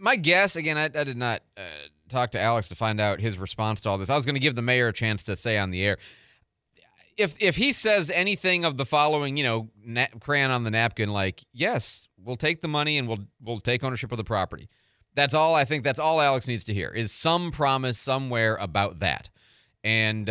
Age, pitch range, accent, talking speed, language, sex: 30-49, 110-150 Hz, American, 235 wpm, English, male